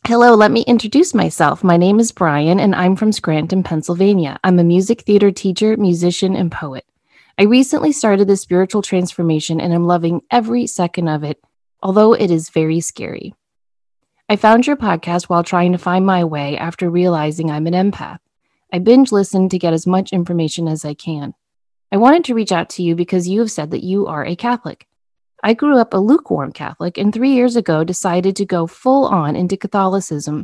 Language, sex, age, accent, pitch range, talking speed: English, female, 20-39, American, 175-230 Hz, 195 wpm